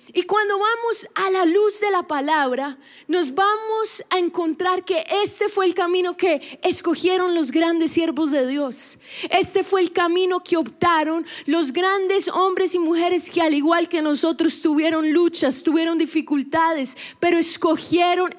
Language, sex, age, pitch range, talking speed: Spanish, female, 20-39, 310-355 Hz, 155 wpm